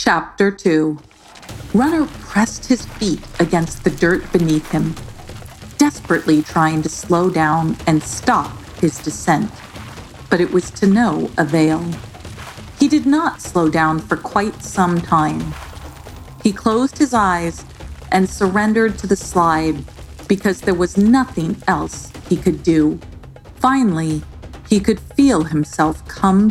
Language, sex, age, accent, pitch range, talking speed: English, female, 40-59, American, 155-220 Hz, 130 wpm